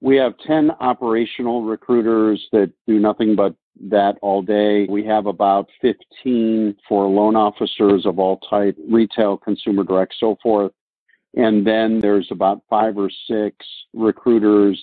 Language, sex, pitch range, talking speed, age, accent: English, male, 100-110 Hz, 140 wpm, 50-69, American